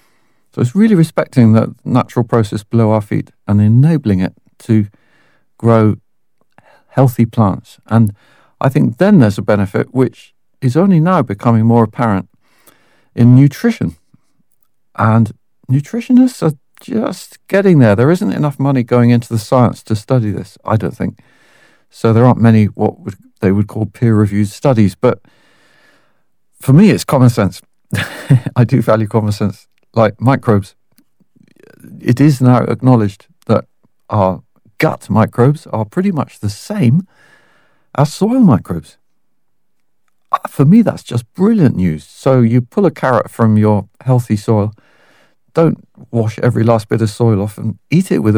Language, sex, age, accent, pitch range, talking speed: English, male, 50-69, British, 110-145 Hz, 150 wpm